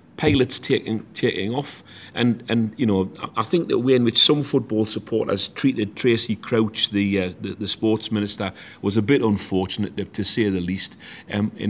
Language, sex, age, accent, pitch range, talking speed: English, male, 40-59, British, 100-115 Hz, 180 wpm